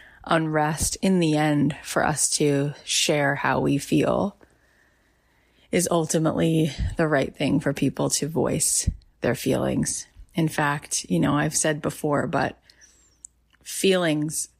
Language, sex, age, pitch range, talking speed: English, female, 20-39, 145-170 Hz, 125 wpm